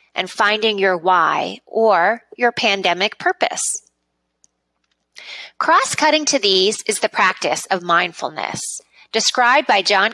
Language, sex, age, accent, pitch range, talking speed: English, female, 20-39, American, 185-265 Hz, 110 wpm